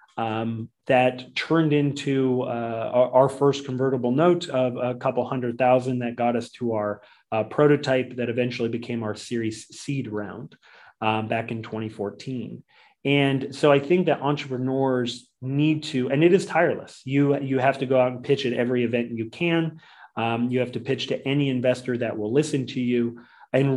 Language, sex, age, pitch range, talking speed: English, male, 30-49, 120-145 Hz, 180 wpm